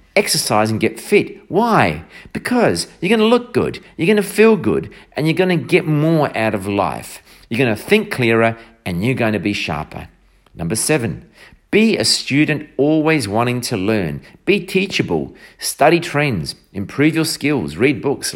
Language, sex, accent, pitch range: English, male, Australian, 110-165 Hz